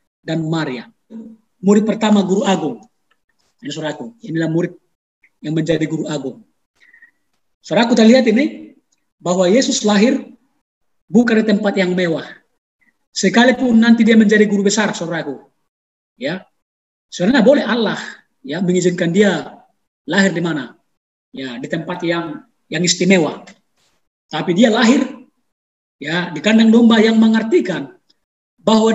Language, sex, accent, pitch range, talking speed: Indonesian, male, native, 200-260 Hz, 120 wpm